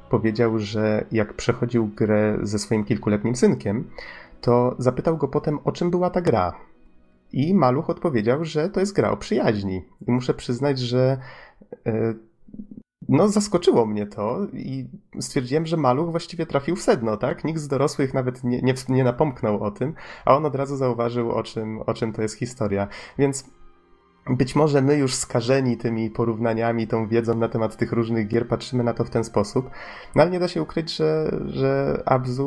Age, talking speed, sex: 30-49, 170 wpm, male